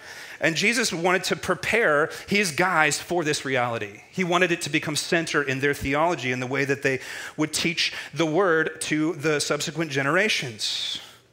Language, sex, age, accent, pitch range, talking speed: English, male, 30-49, American, 135-175 Hz, 170 wpm